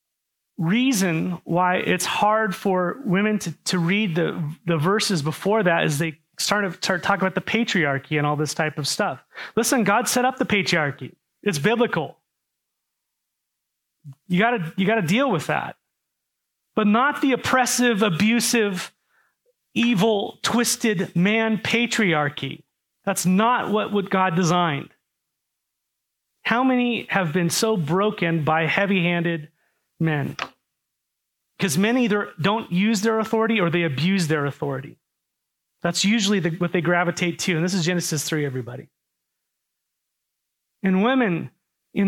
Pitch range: 170-220 Hz